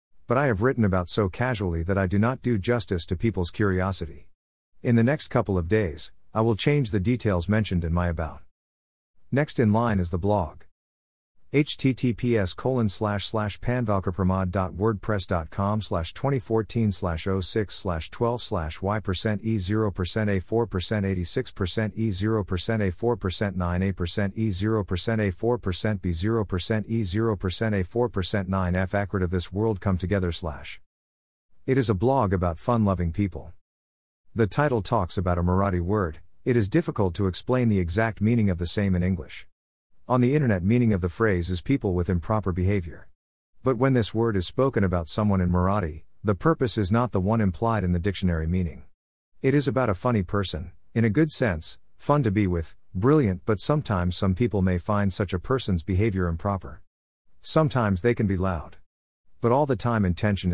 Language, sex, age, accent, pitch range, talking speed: English, male, 50-69, American, 90-115 Hz, 175 wpm